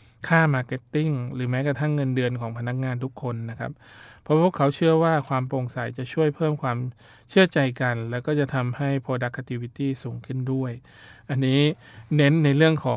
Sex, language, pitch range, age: male, Thai, 120-140 Hz, 20-39